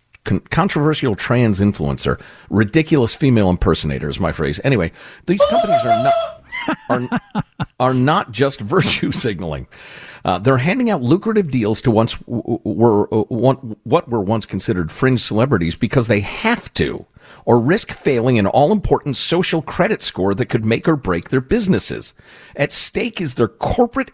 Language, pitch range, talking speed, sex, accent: English, 110-160 Hz, 155 wpm, male, American